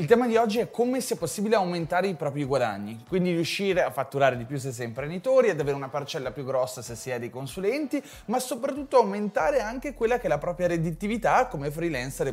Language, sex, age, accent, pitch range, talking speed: Italian, male, 20-39, native, 155-205 Hz, 215 wpm